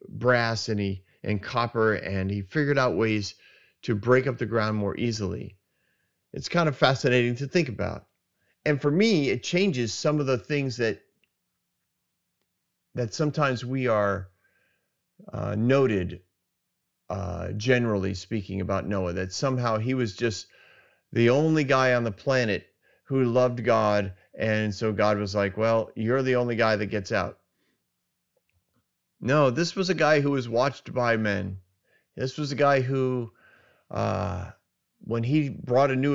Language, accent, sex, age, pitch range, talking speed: English, American, male, 40-59, 105-135 Hz, 155 wpm